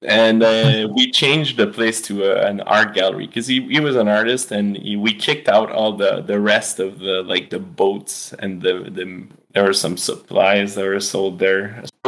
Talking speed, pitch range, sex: 215 wpm, 105-125 Hz, male